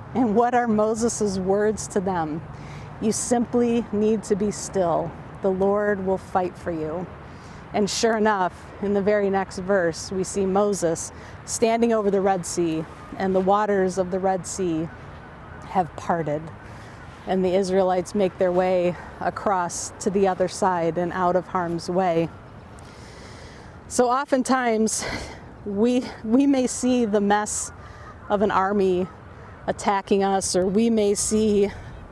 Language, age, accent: English, 30-49, American